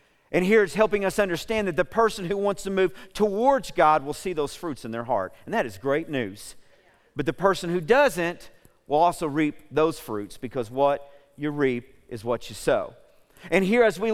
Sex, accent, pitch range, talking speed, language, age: male, American, 165-265 Hz, 210 wpm, English, 50-69